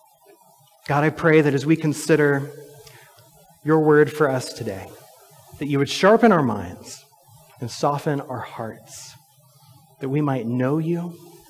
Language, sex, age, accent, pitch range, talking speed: English, male, 30-49, American, 130-180 Hz, 140 wpm